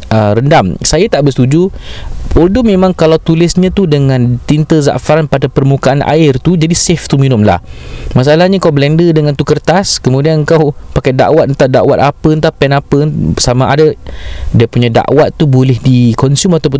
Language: Malay